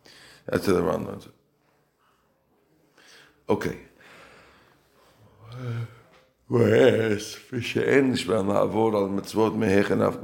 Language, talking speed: English, 60 wpm